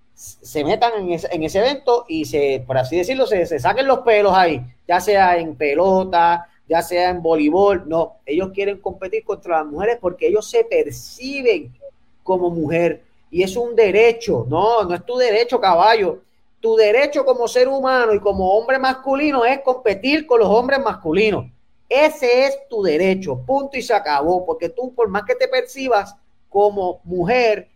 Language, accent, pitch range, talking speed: Spanish, American, 170-245 Hz, 175 wpm